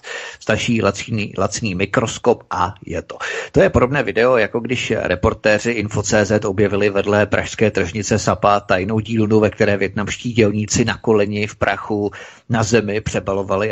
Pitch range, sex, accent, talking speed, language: 100-115 Hz, male, native, 145 wpm, Czech